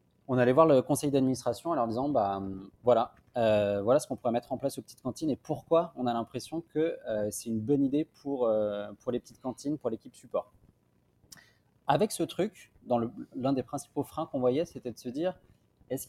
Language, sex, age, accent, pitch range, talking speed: French, male, 30-49, French, 115-145 Hz, 230 wpm